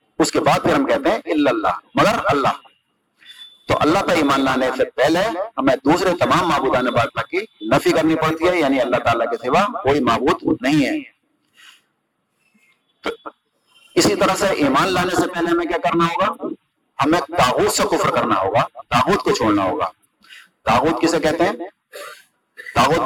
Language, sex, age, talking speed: Urdu, male, 50-69, 165 wpm